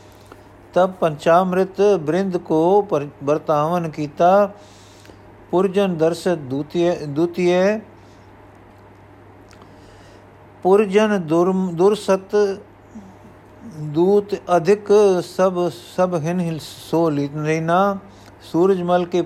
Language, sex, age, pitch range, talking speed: Punjabi, male, 50-69, 110-180 Hz, 70 wpm